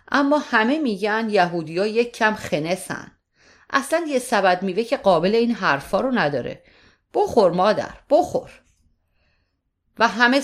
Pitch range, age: 165-225 Hz, 30-49